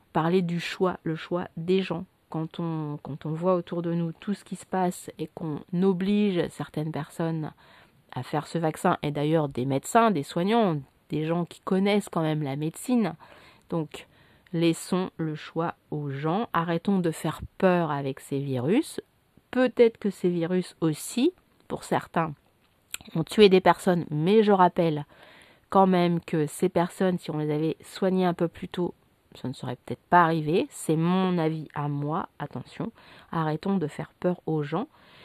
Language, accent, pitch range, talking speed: French, French, 165-205 Hz, 170 wpm